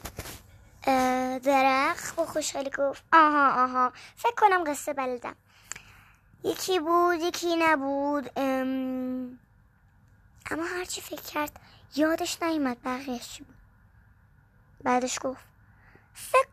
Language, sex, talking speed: Persian, male, 95 wpm